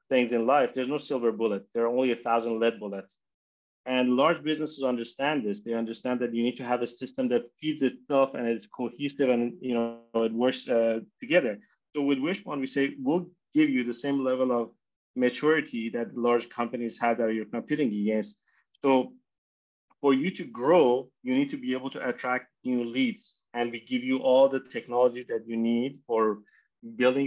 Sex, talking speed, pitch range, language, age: male, 195 wpm, 115-130 Hz, English, 30-49